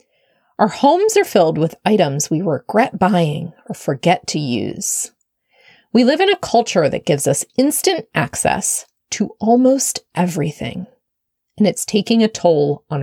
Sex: female